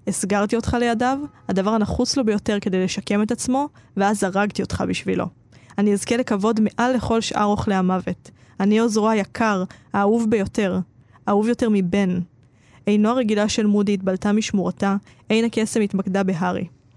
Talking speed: 145 wpm